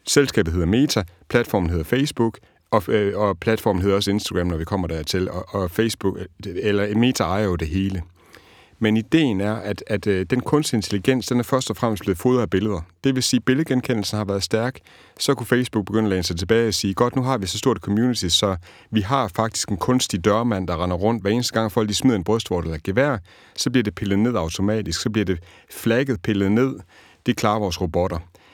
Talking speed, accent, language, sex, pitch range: 220 wpm, native, Danish, male, 100-125 Hz